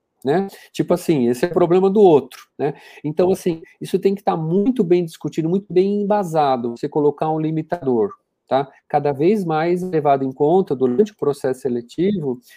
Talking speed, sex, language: 180 wpm, male, Portuguese